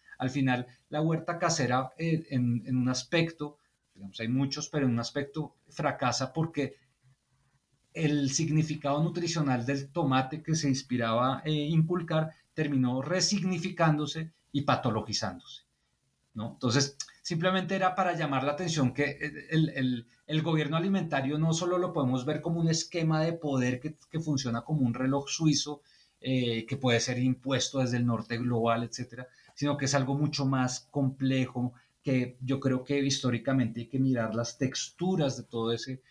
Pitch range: 125-155 Hz